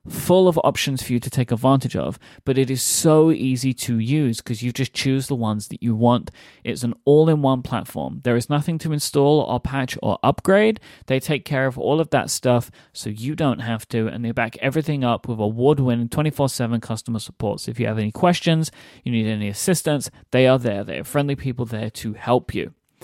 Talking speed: 210 wpm